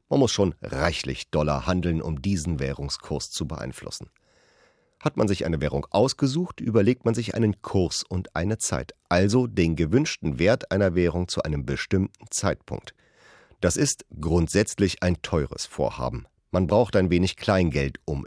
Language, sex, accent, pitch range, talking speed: German, male, German, 75-105 Hz, 155 wpm